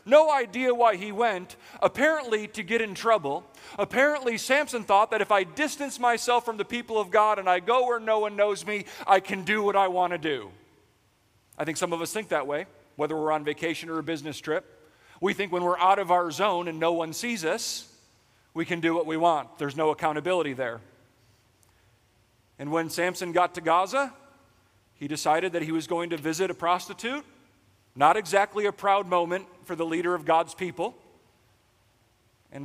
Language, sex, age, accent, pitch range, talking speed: English, male, 40-59, American, 155-220 Hz, 195 wpm